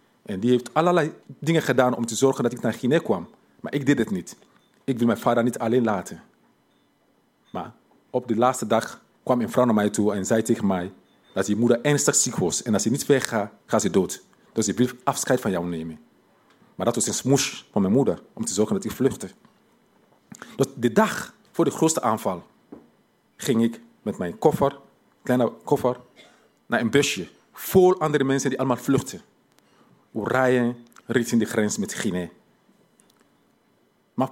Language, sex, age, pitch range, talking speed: Dutch, male, 40-59, 115-155 Hz, 190 wpm